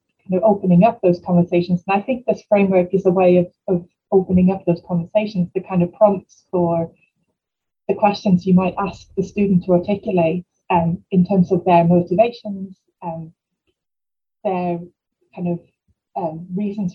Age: 20-39